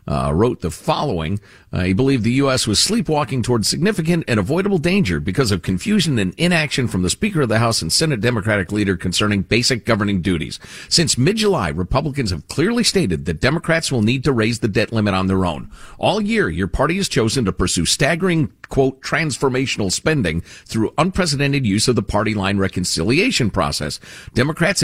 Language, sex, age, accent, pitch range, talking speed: English, male, 50-69, American, 105-165 Hz, 180 wpm